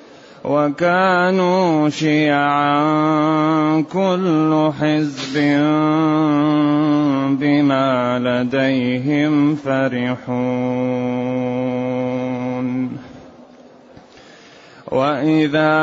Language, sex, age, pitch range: Arabic, male, 30-49, 145-155 Hz